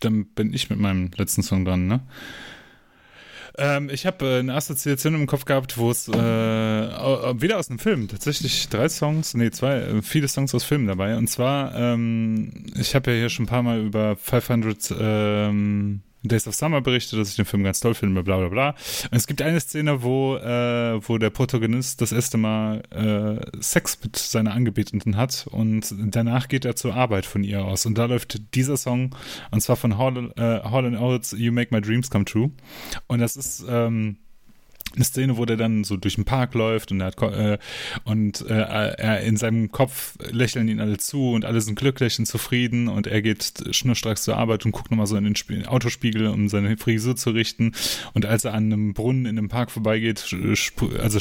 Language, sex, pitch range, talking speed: German, male, 110-125 Hz, 200 wpm